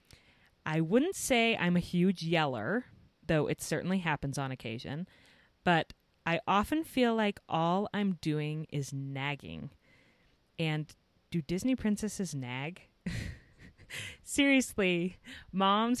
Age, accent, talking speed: 30-49, American, 110 wpm